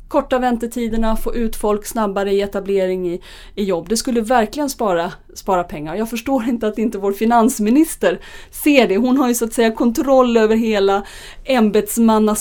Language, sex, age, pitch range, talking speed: Swedish, female, 30-49, 195-230 Hz, 175 wpm